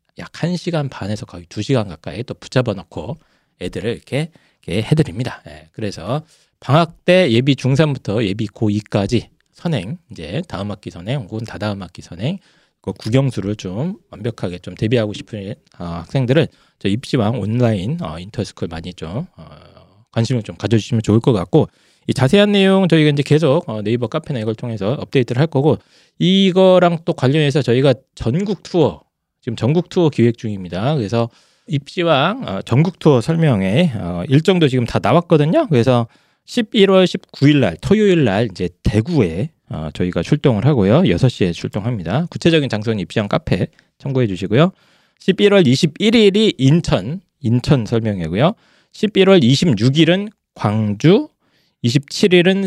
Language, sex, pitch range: Korean, male, 110-165 Hz